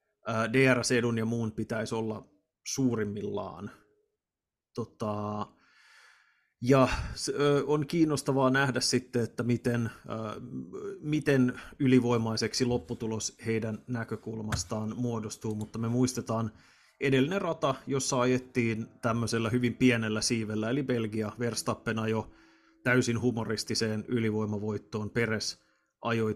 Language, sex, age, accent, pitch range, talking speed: Finnish, male, 30-49, native, 110-125 Hz, 90 wpm